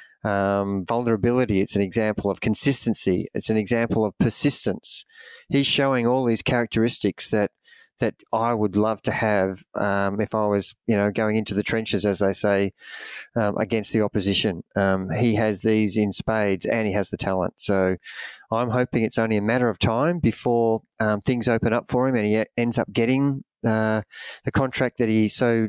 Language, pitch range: English, 105-120 Hz